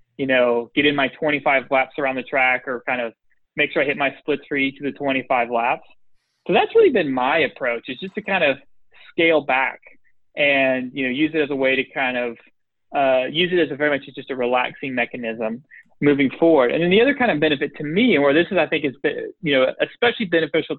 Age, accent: 20-39, American